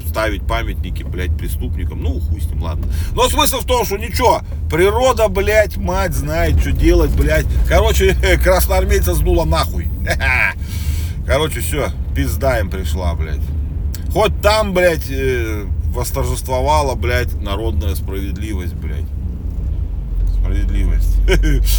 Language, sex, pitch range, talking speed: Russian, male, 75-85 Hz, 115 wpm